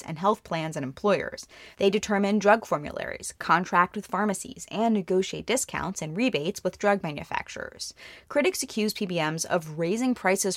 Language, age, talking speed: English, 20-39, 150 wpm